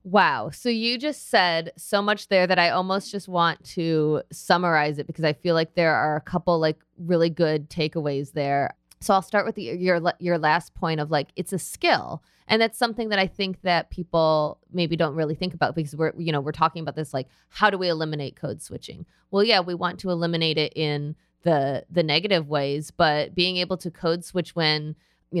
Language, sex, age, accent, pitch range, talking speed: English, female, 20-39, American, 150-180 Hz, 215 wpm